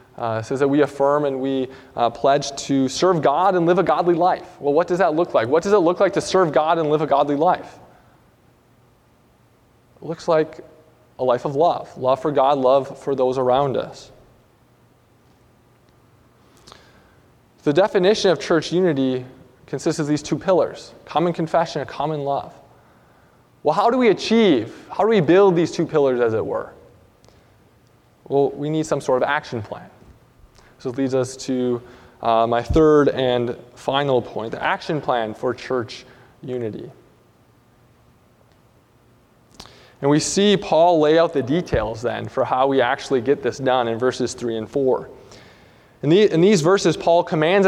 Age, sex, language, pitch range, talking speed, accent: 20-39, male, English, 130-175 Hz, 170 wpm, American